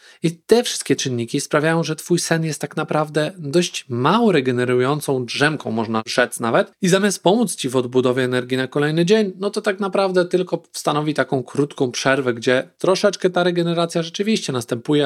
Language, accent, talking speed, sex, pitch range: Polish, native, 170 wpm, male, 125-170 Hz